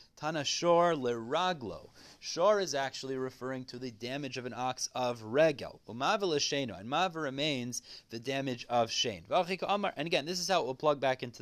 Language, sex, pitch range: English, male, 125-160 Hz